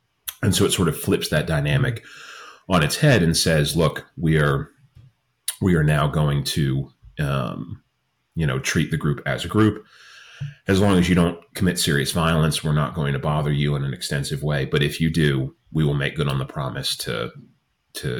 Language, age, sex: English, 30-49, male